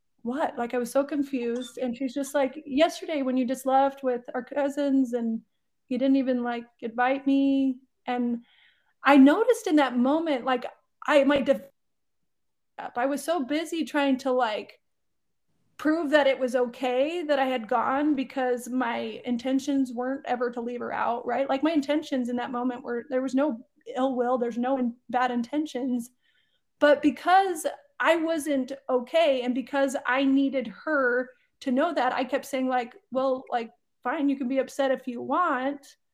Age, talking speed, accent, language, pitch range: 30-49, 175 wpm, American, English, 250-295 Hz